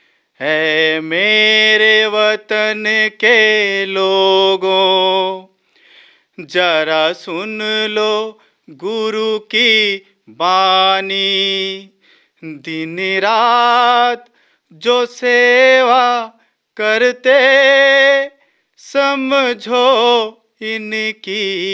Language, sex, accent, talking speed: Hindi, male, native, 45 wpm